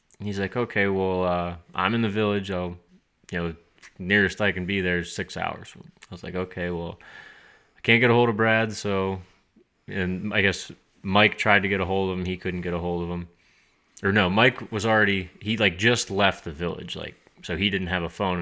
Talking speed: 225 wpm